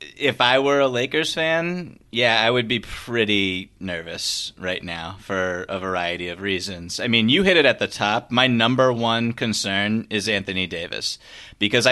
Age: 30-49